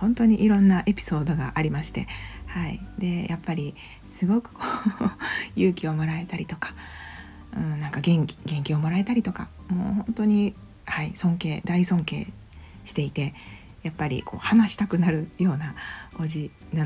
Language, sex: Japanese, female